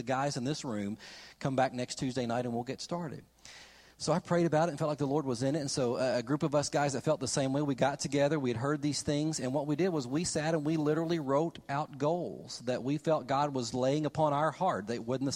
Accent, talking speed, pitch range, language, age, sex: American, 280 wpm, 135-175 Hz, English, 40-59, male